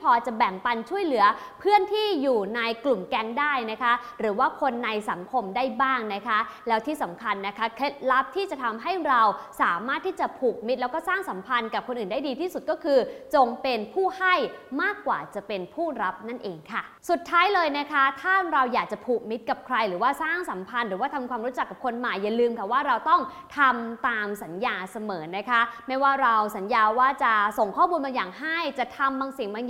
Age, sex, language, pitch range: 20-39, female, English, 220-300 Hz